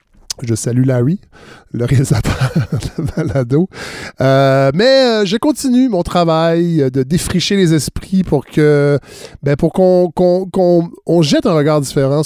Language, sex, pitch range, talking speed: French, male, 130-180 Hz, 145 wpm